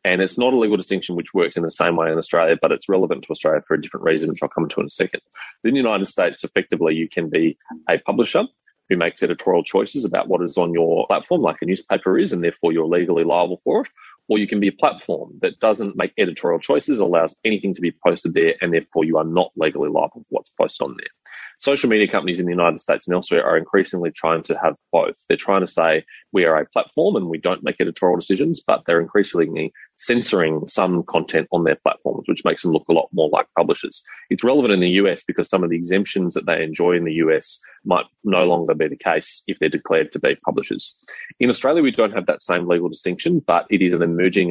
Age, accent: 30-49, Australian